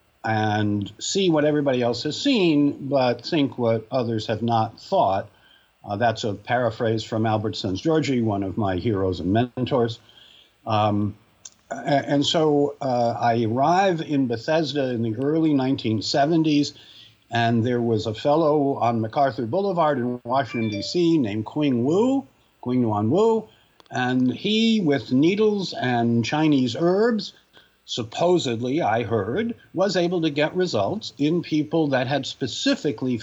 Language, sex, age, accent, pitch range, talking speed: English, male, 60-79, American, 115-150 Hz, 140 wpm